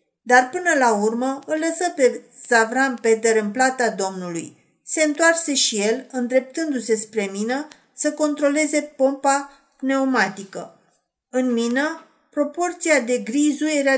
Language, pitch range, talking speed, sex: Romanian, 225-295 Hz, 125 wpm, female